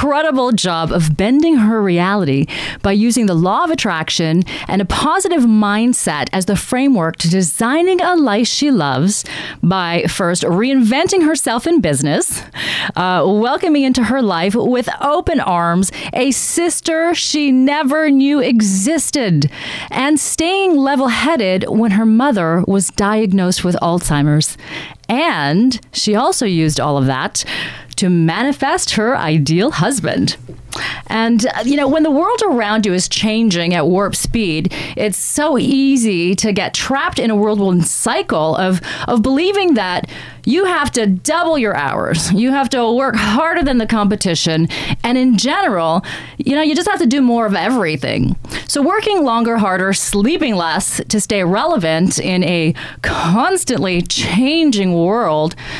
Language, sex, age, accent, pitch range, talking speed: English, female, 30-49, American, 180-275 Hz, 145 wpm